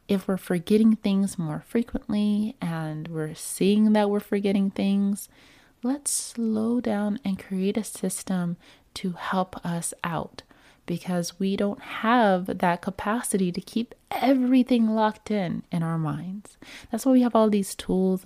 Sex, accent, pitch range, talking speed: female, American, 165-205 Hz, 150 wpm